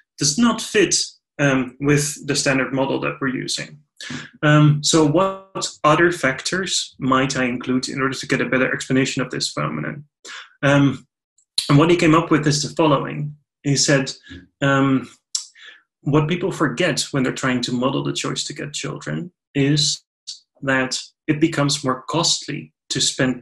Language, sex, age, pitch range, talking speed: English, male, 30-49, 125-150 Hz, 160 wpm